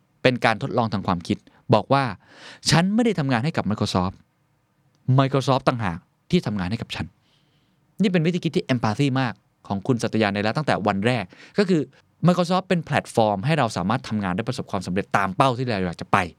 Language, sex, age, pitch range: Thai, male, 20-39, 110-150 Hz